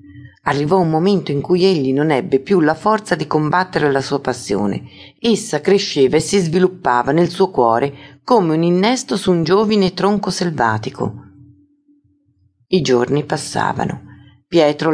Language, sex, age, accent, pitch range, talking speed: Italian, female, 50-69, native, 125-165 Hz, 145 wpm